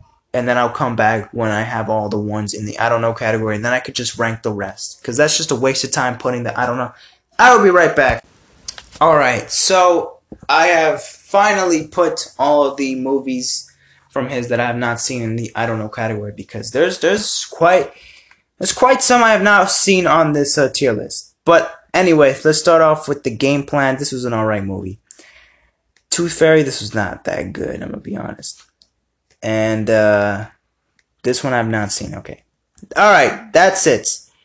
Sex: male